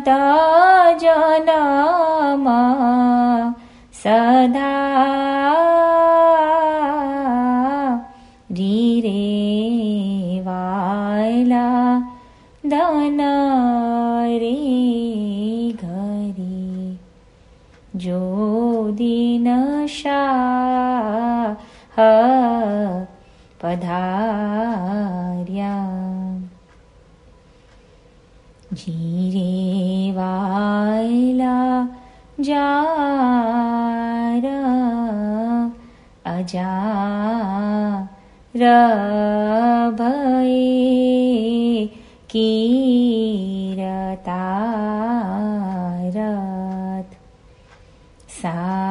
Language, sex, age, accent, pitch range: Italian, female, 20-39, Indian, 200-255 Hz